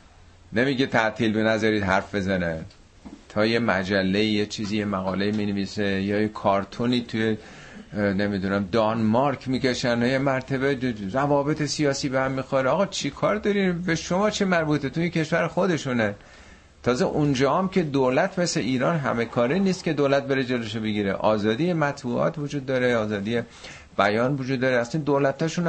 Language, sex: Persian, male